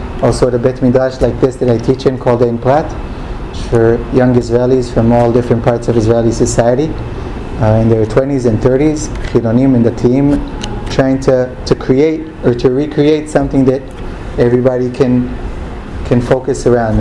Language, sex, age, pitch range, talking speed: English, male, 30-49, 120-145 Hz, 165 wpm